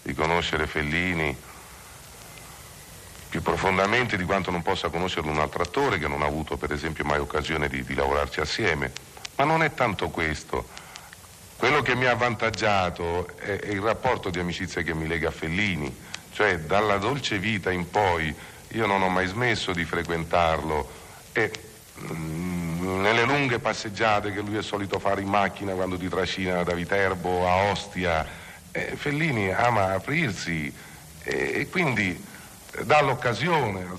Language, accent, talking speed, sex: Italian, native, 155 wpm, male